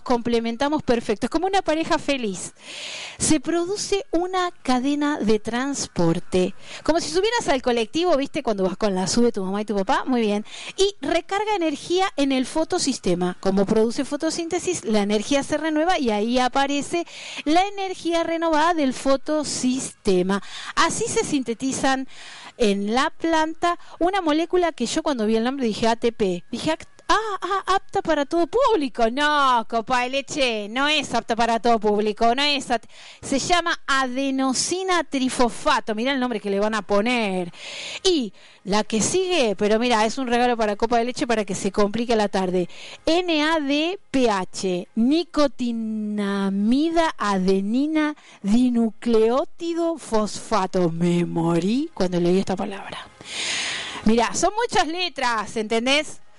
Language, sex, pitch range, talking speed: Spanish, female, 220-320 Hz, 145 wpm